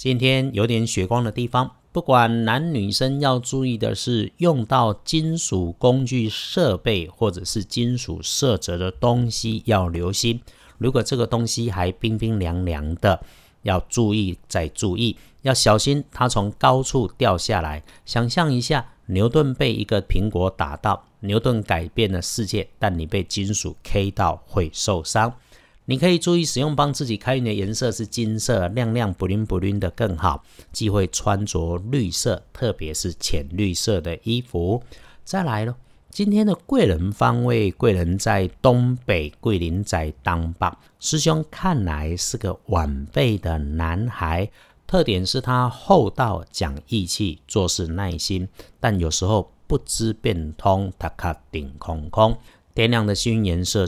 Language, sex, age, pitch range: Chinese, male, 50-69, 90-125 Hz